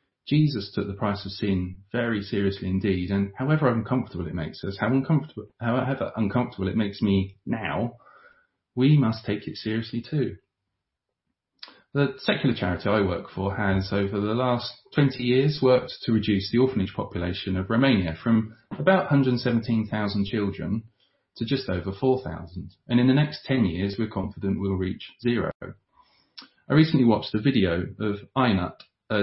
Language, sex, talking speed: English, male, 150 wpm